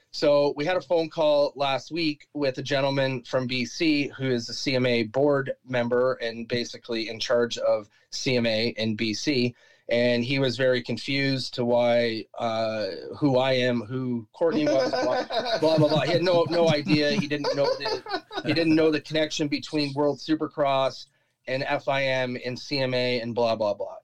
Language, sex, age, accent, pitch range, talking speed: English, male, 30-49, American, 120-145 Hz, 175 wpm